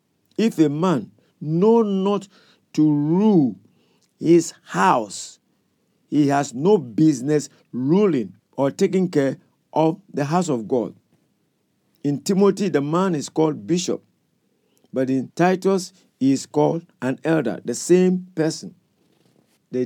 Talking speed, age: 125 wpm, 50-69